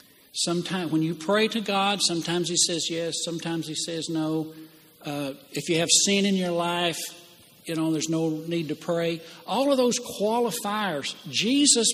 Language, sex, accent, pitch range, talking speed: English, male, American, 150-210 Hz, 170 wpm